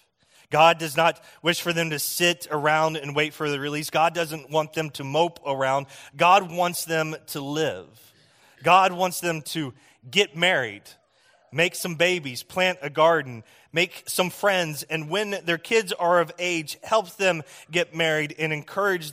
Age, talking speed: 30-49, 170 wpm